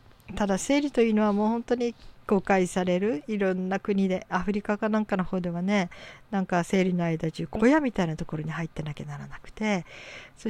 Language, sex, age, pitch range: Japanese, female, 50-69, 170-215 Hz